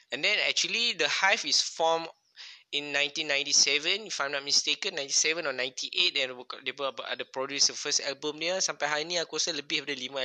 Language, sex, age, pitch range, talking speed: Malay, male, 20-39, 130-165 Hz, 195 wpm